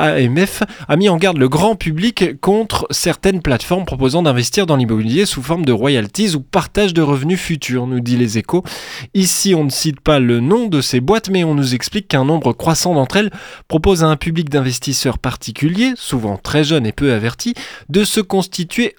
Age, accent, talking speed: 20-39, French, 195 wpm